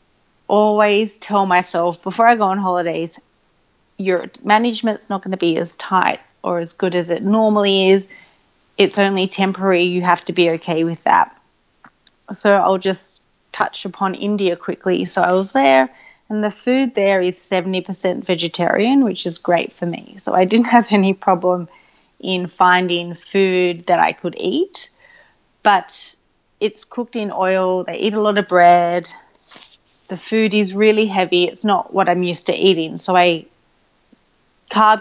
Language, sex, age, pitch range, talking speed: English, female, 30-49, 175-205 Hz, 165 wpm